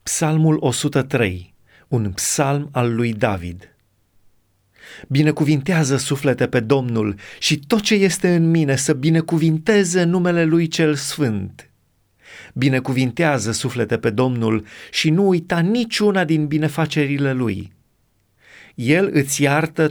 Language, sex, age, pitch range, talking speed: Romanian, male, 30-49, 115-165 Hz, 110 wpm